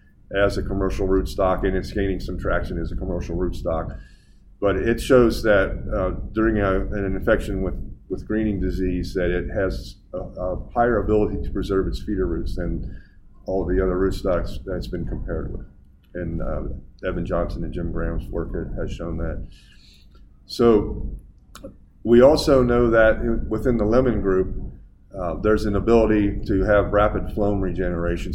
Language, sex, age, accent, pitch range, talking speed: English, male, 30-49, American, 90-105 Hz, 160 wpm